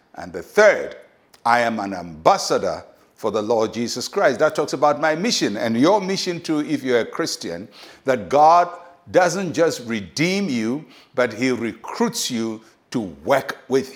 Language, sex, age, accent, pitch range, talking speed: English, male, 60-79, Nigerian, 115-175 Hz, 165 wpm